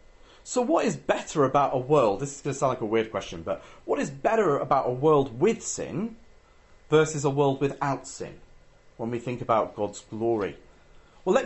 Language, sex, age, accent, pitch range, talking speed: English, male, 40-59, British, 130-195 Hz, 200 wpm